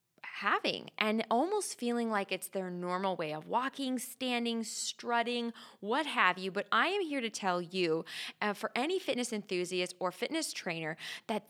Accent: American